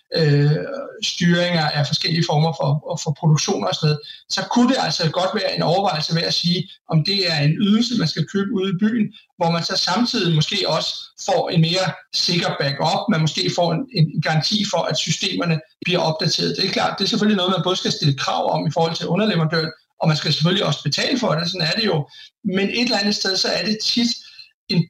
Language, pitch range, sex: Danish, 155-195 Hz, male